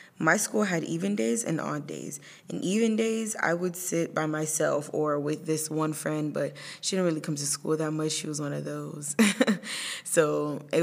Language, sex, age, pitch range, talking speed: English, female, 20-39, 155-180 Hz, 205 wpm